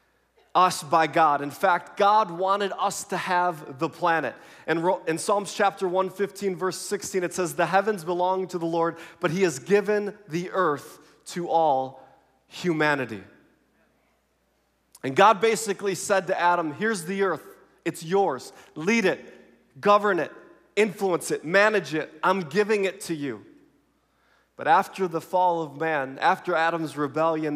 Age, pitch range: 30-49, 170-210 Hz